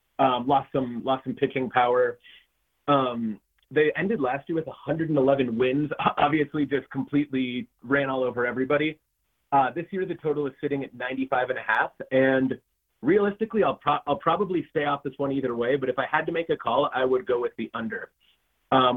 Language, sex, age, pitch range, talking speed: English, male, 30-49, 130-150 Hz, 195 wpm